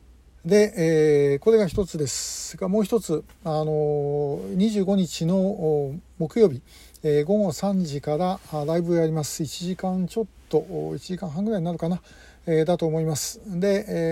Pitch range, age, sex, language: 150-190 Hz, 60-79, male, Japanese